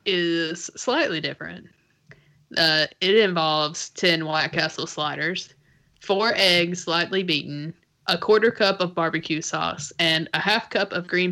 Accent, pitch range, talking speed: American, 160-200 Hz, 140 wpm